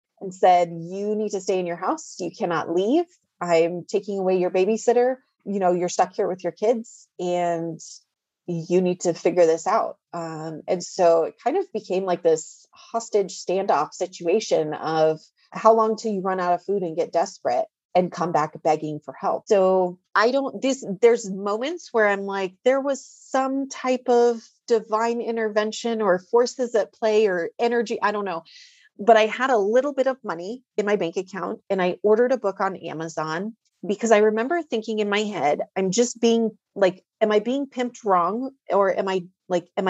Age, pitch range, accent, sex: 30-49, 180-230 Hz, American, female